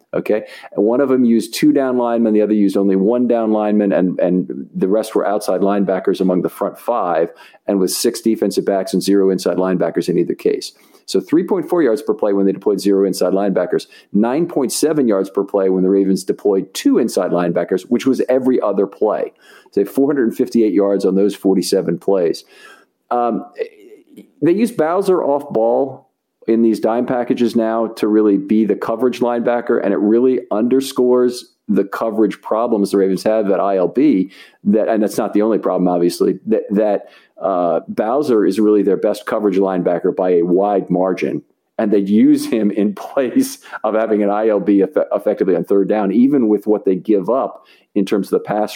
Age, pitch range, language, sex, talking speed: 50-69, 95-120 Hz, English, male, 180 wpm